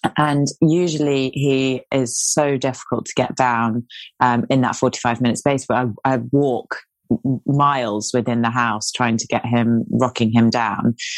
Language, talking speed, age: English, 160 wpm, 20-39